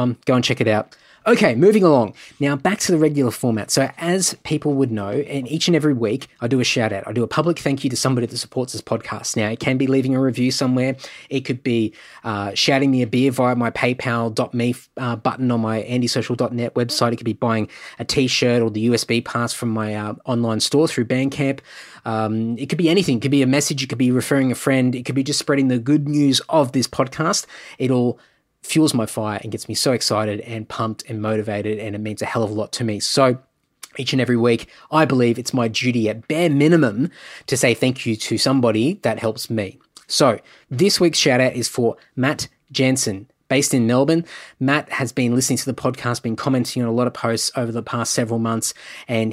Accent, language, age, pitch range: Australian, English, 20-39, 115-140 Hz